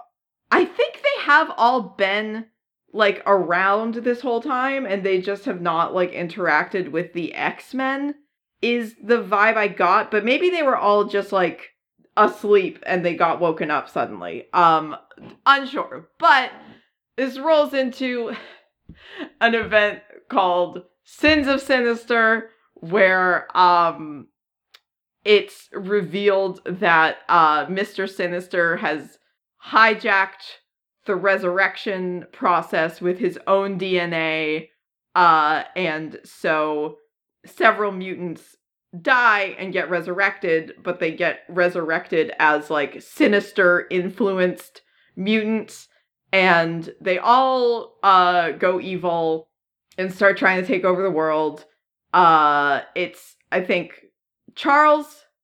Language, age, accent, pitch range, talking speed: English, 30-49, American, 175-235 Hz, 115 wpm